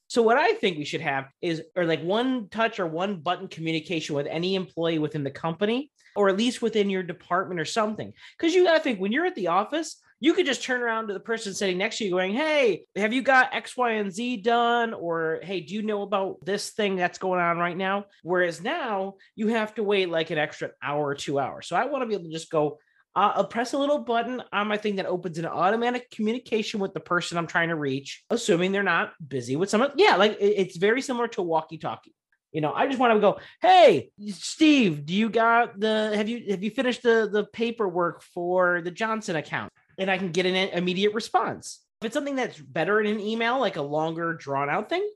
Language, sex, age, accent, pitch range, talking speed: English, male, 30-49, American, 170-230 Hz, 240 wpm